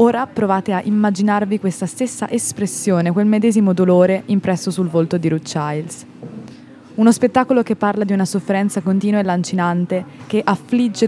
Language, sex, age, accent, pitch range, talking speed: Italian, female, 20-39, native, 175-205 Hz, 150 wpm